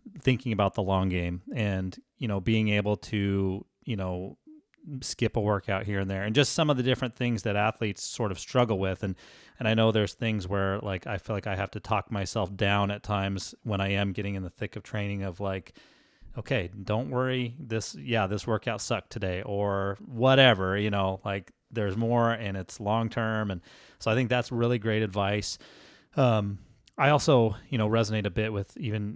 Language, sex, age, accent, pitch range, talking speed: English, male, 30-49, American, 100-120 Hz, 205 wpm